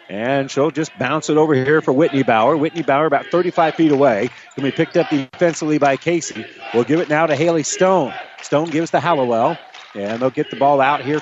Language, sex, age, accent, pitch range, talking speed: English, male, 40-59, American, 140-180 Hz, 220 wpm